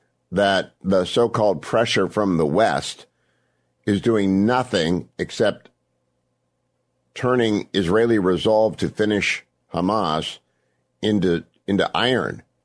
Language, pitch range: English, 80-110 Hz